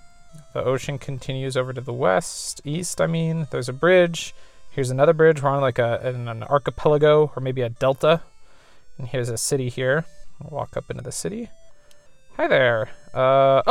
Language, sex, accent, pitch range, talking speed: English, male, American, 130-160 Hz, 180 wpm